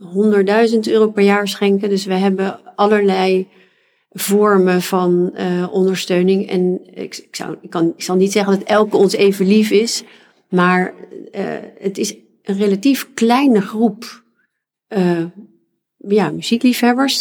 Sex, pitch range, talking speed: female, 175-205 Hz, 140 wpm